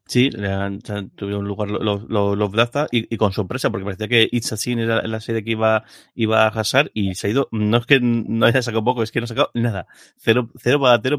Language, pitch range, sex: Spanish, 105-125 Hz, male